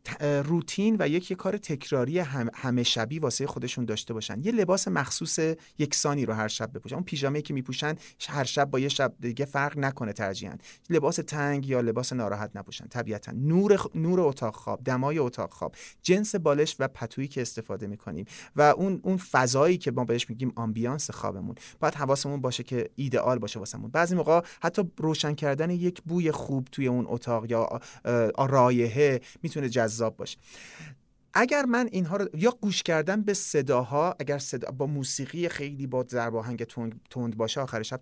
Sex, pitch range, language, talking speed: male, 120-160 Hz, Persian, 170 wpm